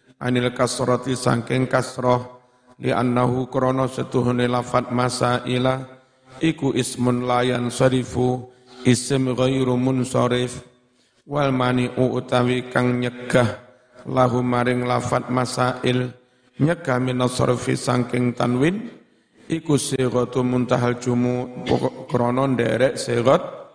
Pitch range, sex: 125-130 Hz, male